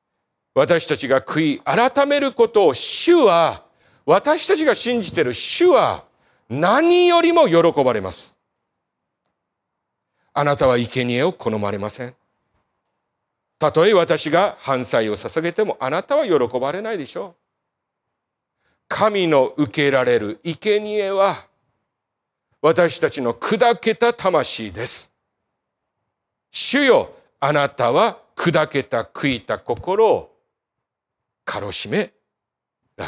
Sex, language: male, Japanese